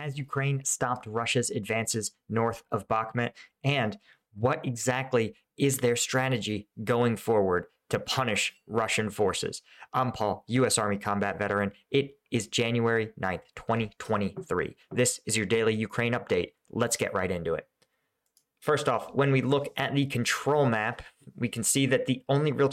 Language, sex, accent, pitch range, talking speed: English, male, American, 110-135 Hz, 155 wpm